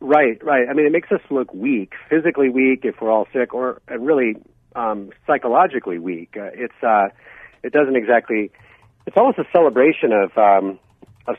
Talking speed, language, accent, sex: 175 wpm, English, American, male